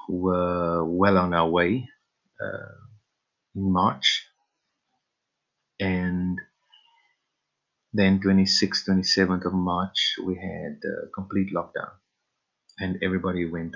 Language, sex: English, male